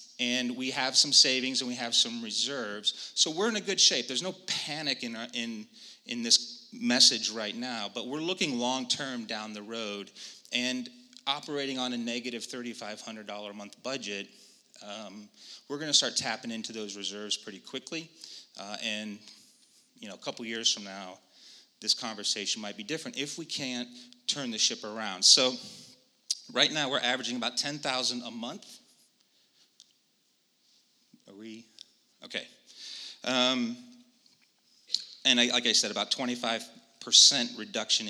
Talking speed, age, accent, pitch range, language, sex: 145 wpm, 30-49, American, 110-140 Hz, English, male